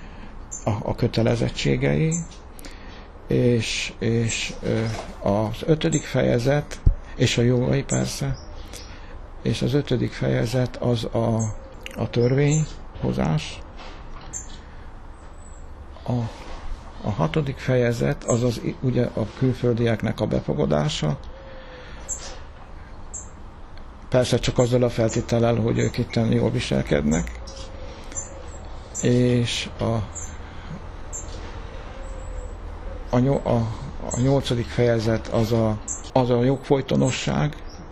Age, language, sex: 60-79, Hungarian, male